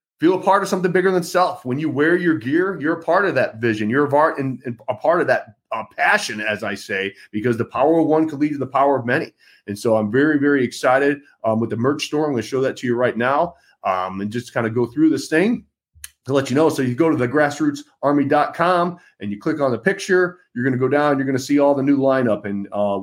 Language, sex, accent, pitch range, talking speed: English, male, American, 115-145 Hz, 265 wpm